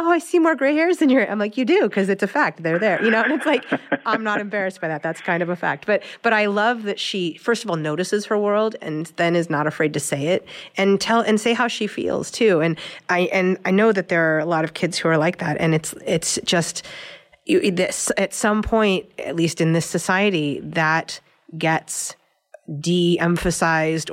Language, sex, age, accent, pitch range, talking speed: English, female, 30-49, American, 160-205 Hz, 235 wpm